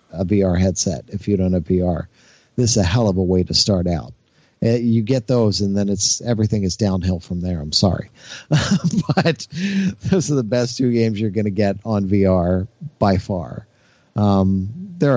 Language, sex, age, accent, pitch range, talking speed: English, male, 40-59, American, 100-125 Hz, 190 wpm